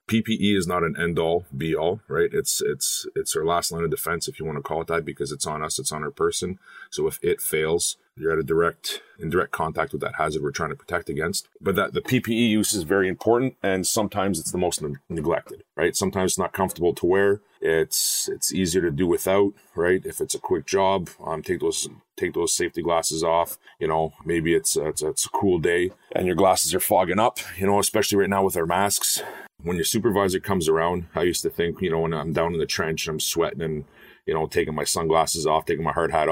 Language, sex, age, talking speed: English, male, 30-49, 245 wpm